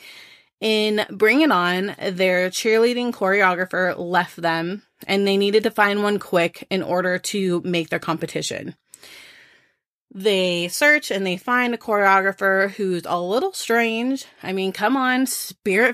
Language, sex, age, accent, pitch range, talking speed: English, female, 30-49, American, 180-235 Hz, 145 wpm